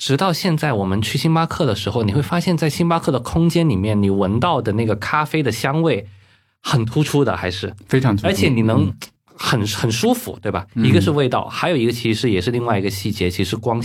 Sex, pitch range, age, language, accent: male, 100-145 Hz, 20-39, Chinese, native